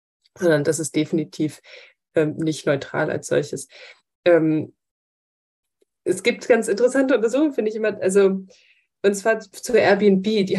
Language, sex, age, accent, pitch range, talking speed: English, female, 20-39, German, 180-215 Hz, 135 wpm